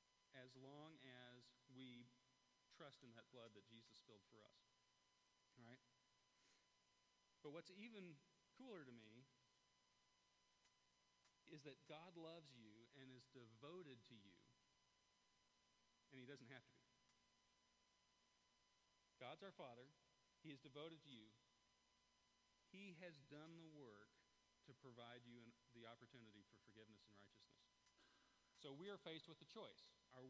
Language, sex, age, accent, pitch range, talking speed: English, male, 40-59, American, 115-150 Hz, 130 wpm